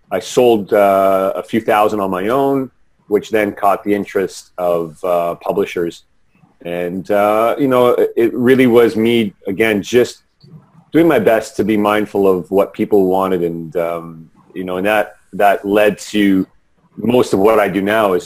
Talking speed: 175 wpm